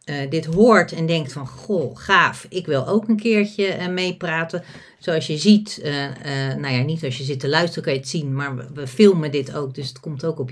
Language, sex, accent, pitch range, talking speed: Dutch, female, Dutch, 140-200 Hz, 245 wpm